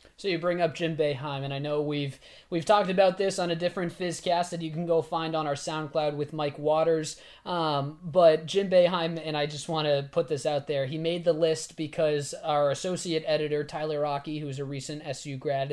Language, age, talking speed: English, 20-39, 220 wpm